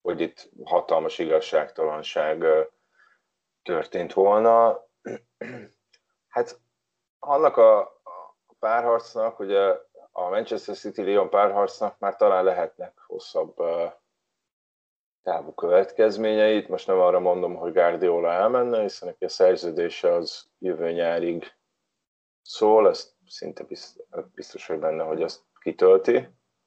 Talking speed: 100 wpm